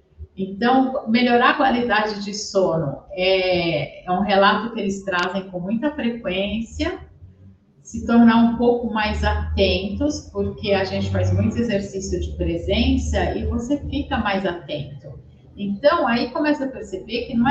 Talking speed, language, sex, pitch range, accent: 145 wpm, Portuguese, female, 180-260 Hz, Brazilian